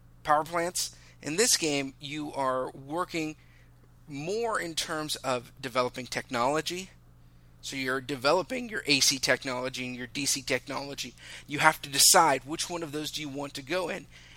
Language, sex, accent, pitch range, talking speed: English, male, American, 130-175 Hz, 160 wpm